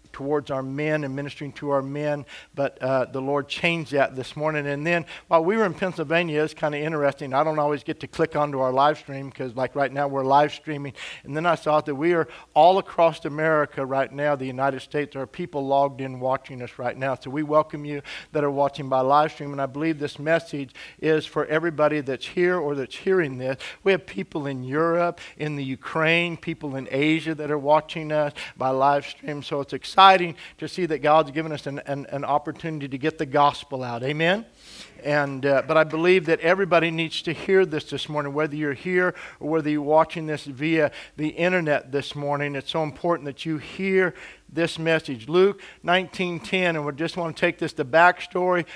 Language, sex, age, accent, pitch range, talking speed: English, male, 50-69, American, 140-170 Hz, 215 wpm